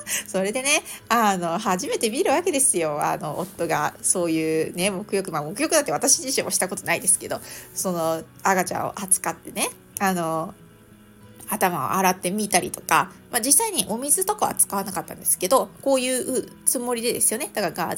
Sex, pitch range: female, 185-275 Hz